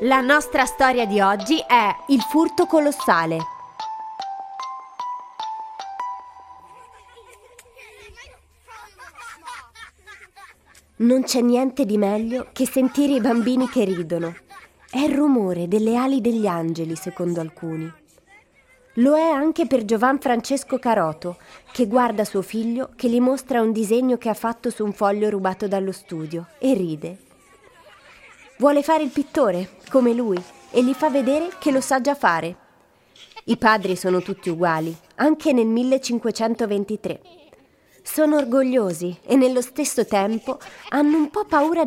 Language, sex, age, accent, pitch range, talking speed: Italian, female, 20-39, native, 200-285 Hz, 130 wpm